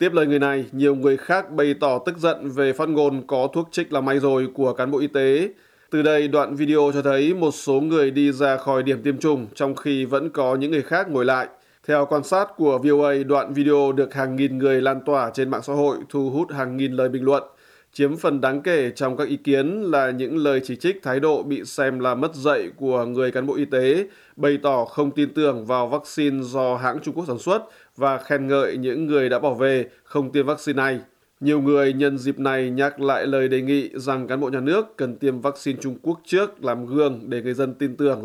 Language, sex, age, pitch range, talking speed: Vietnamese, male, 20-39, 130-145 Hz, 240 wpm